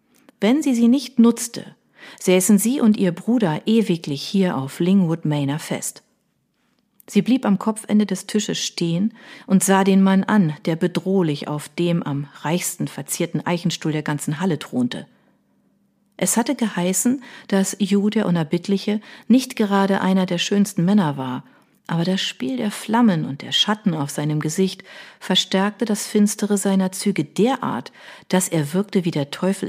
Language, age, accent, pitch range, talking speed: German, 40-59, German, 155-210 Hz, 155 wpm